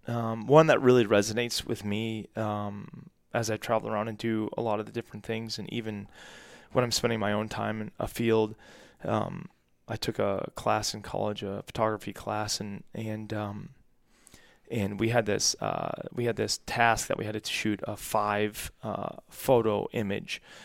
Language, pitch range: English, 105-115 Hz